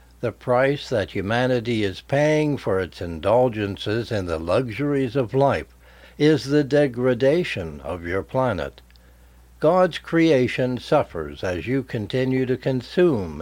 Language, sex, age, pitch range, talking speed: English, male, 60-79, 90-145 Hz, 125 wpm